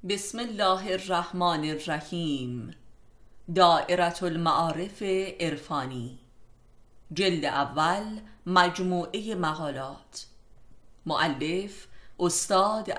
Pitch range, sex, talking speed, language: 135-185 Hz, female, 60 wpm, Persian